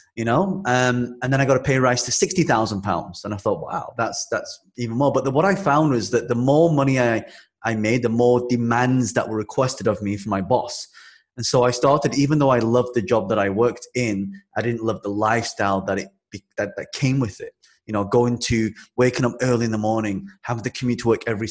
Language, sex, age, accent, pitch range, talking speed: English, male, 20-39, British, 110-125 Hz, 245 wpm